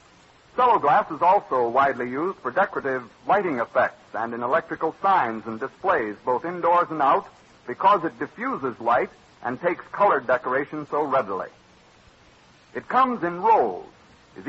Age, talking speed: 60-79, 140 wpm